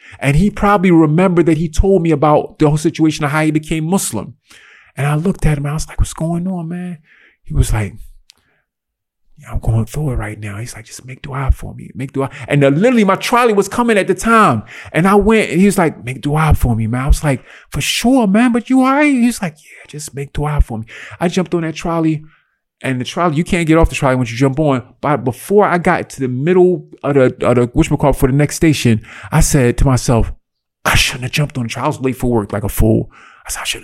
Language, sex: English, male